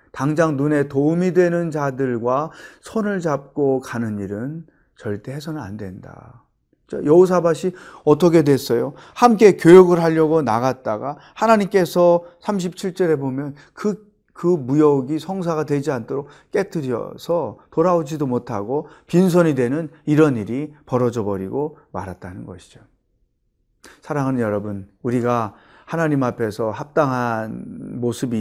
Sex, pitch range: male, 120-175 Hz